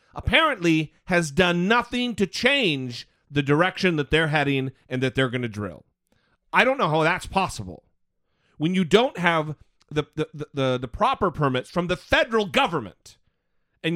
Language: English